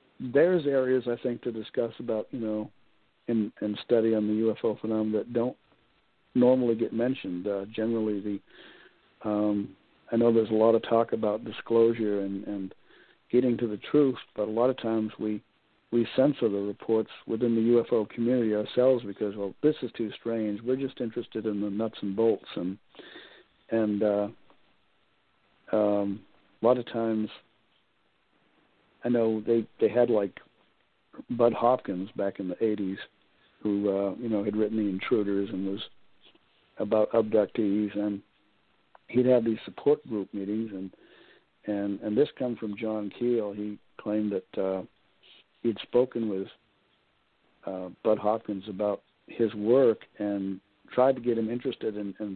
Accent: American